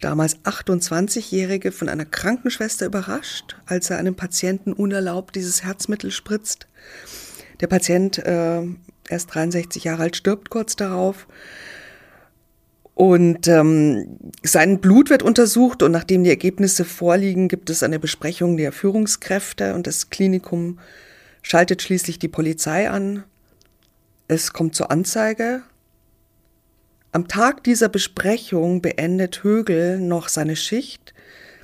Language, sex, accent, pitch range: German, female, German, 165-200 Hz